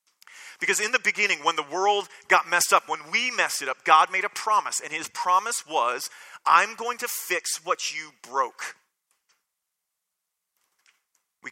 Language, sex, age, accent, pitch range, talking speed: English, male, 30-49, American, 165-215 Hz, 160 wpm